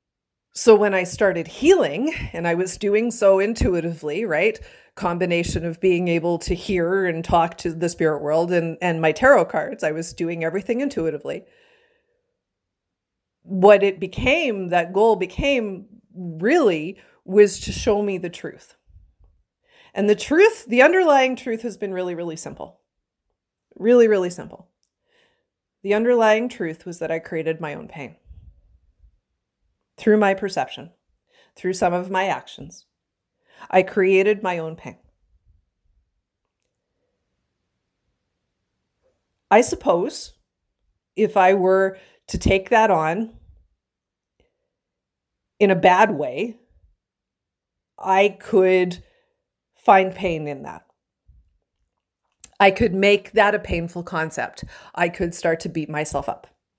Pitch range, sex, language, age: 165-220 Hz, female, English, 40-59